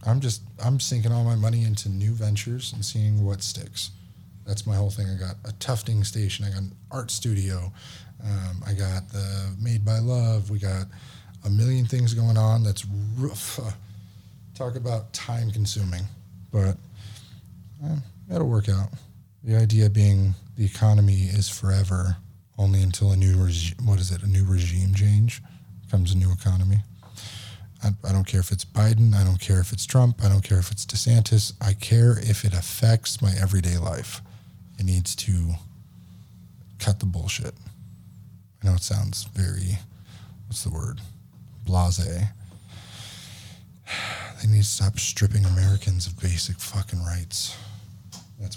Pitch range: 95-110 Hz